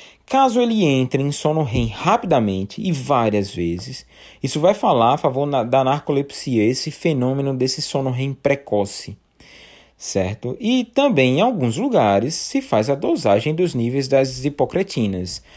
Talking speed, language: 145 wpm, Portuguese